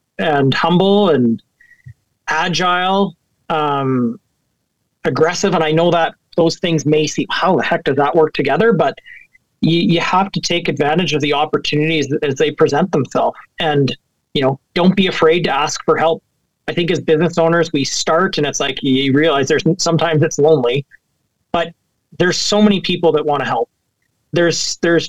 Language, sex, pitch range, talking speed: English, male, 150-180 Hz, 170 wpm